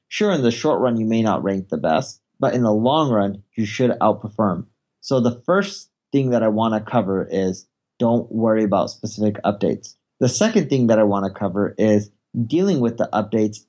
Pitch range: 110-130 Hz